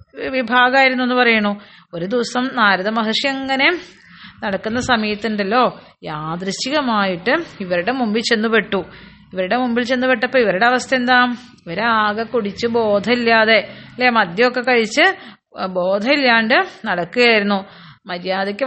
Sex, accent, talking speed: female, native, 95 wpm